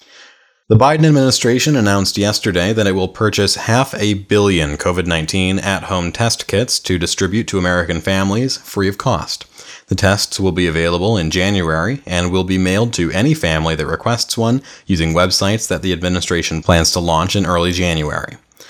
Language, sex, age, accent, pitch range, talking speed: English, male, 30-49, American, 85-100 Hz, 165 wpm